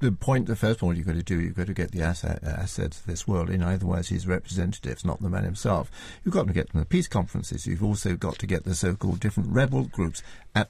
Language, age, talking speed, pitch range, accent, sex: English, 60-79, 255 wpm, 95-125 Hz, British, male